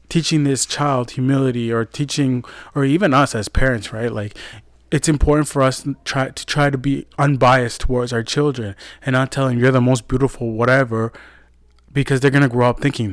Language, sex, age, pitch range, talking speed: English, male, 20-39, 110-130 Hz, 185 wpm